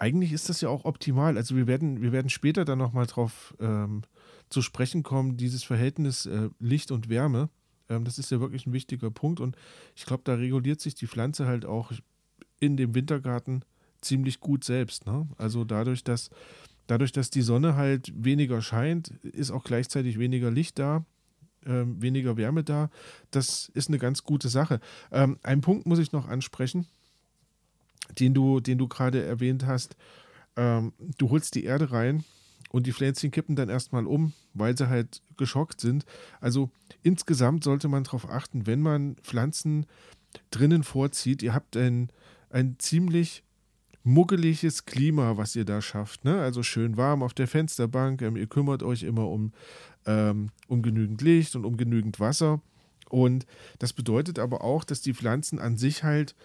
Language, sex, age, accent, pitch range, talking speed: German, male, 40-59, German, 120-150 Hz, 170 wpm